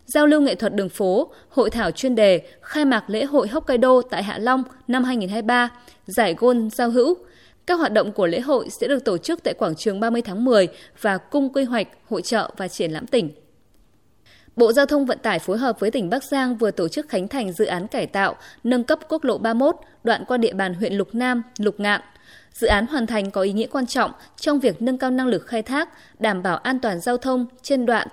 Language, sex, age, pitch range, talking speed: Vietnamese, female, 20-39, 210-270 Hz, 235 wpm